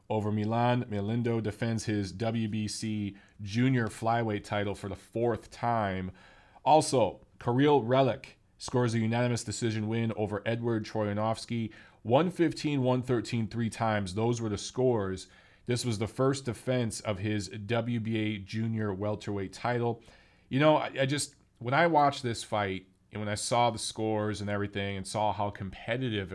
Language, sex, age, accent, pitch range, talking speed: English, male, 30-49, American, 100-120 Hz, 145 wpm